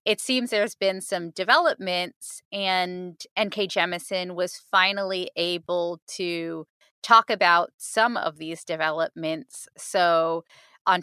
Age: 20-39